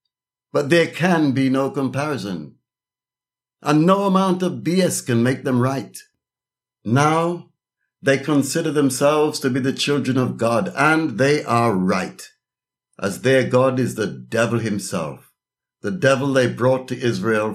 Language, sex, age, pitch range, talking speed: English, male, 60-79, 110-135 Hz, 145 wpm